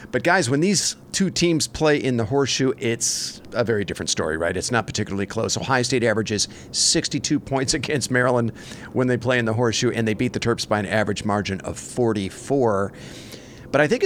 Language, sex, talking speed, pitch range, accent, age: English, male, 200 wpm, 115-145 Hz, American, 50-69